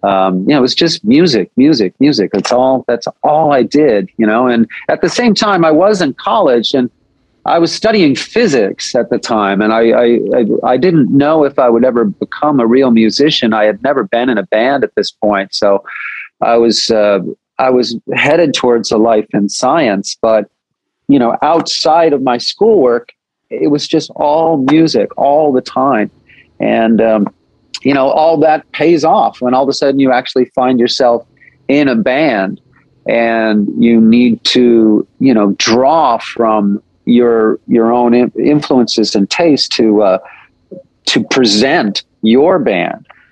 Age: 40-59